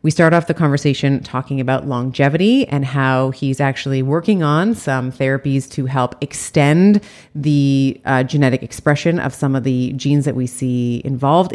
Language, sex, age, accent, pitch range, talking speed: English, female, 30-49, American, 130-155 Hz, 165 wpm